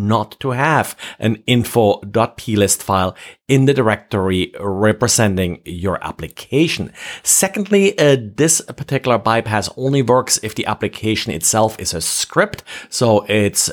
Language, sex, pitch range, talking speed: English, male, 100-130 Hz, 120 wpm